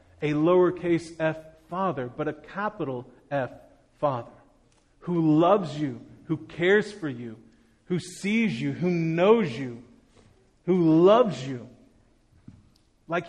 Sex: male